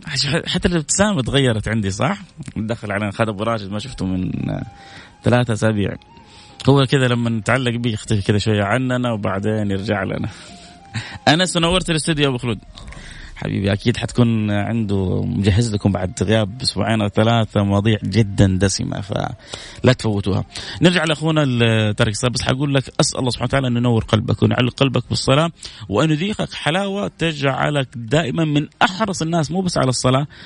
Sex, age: male, 30-49